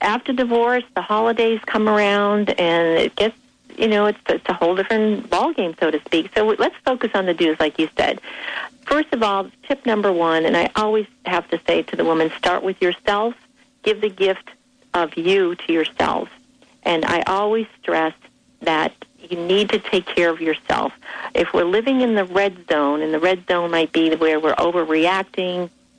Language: English